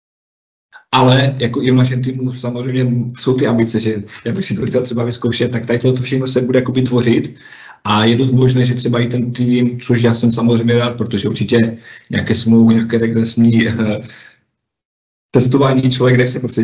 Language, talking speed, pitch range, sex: Czech, 180 wpm, 115-125 Hz, male